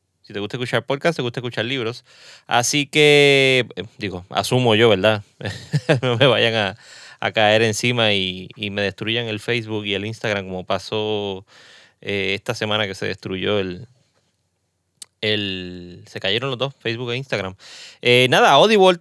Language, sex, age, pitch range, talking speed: Spanish, male, 30-49, 110-140 Hz, 165 wpm